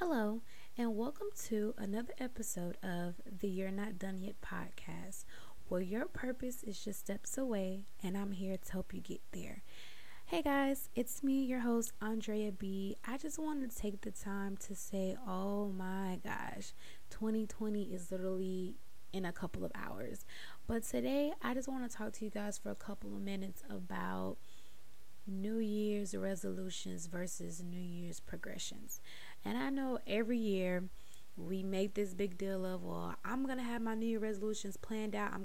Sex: female